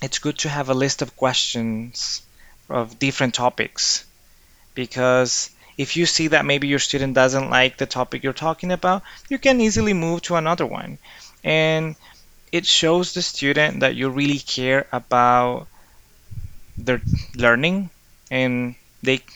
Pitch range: 115-140 Hz